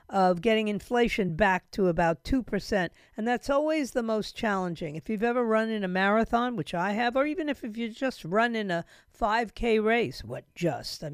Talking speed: 210 wpm